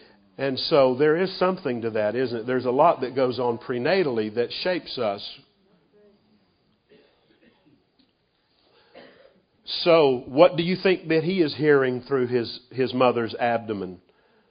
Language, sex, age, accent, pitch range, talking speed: English, male, 50-69, American, 120-150 Hz, 135 wpm